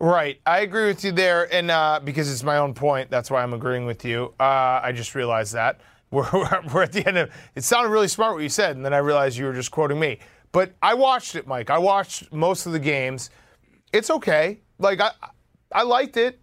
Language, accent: English, American